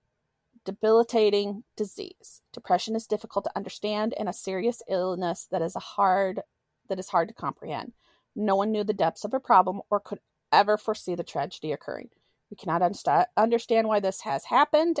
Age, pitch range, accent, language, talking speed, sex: 30-49, 185-220 Hz, American, English, 170 wpm, female